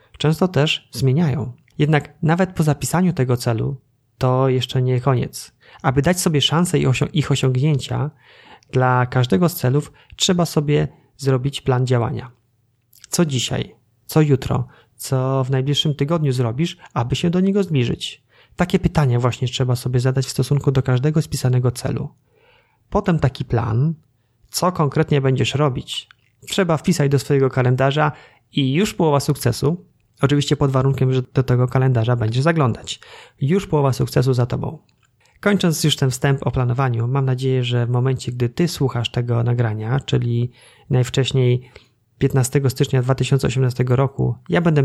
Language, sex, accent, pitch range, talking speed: Polish, male, native, 125-150 Hz, 145 wpm